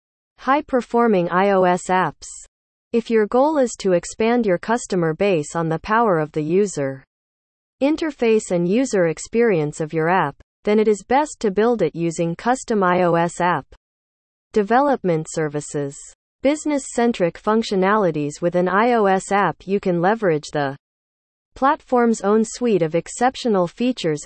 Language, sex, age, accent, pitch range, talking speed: English, female, 40-59, American, 160-230 Hz, 140 wpm